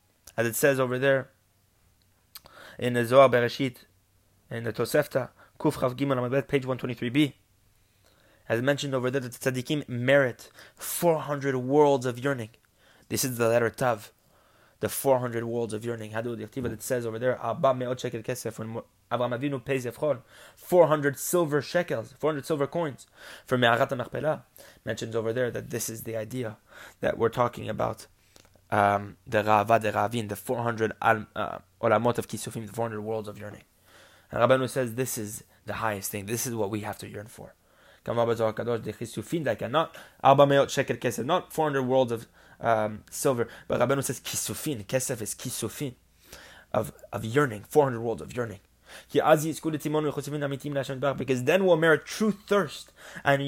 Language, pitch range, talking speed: English, 110-140 Hz, 135 wpm